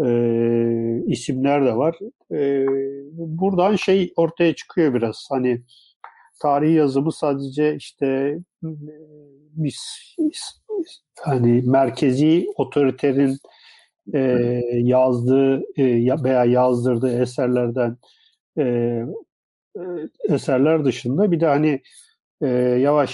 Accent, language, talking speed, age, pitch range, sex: native, Turkish, 85 wpm, 50-69, 130-165 Hz, male